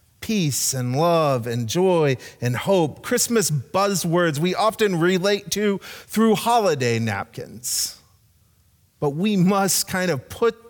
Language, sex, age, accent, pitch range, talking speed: English, male, 30-49, American, 145-200 Hz, 125 wpm